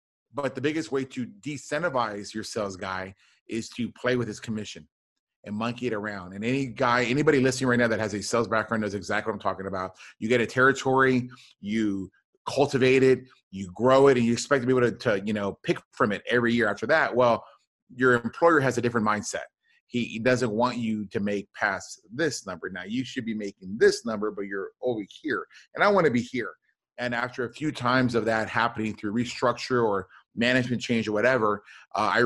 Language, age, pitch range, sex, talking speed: English, 30-49, 105-125 Hz, male, 215 wpm